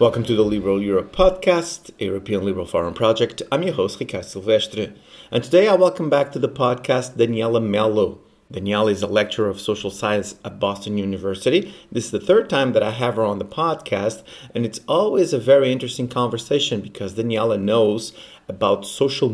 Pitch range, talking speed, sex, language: 105-130 Hz, 185 wpm, male, English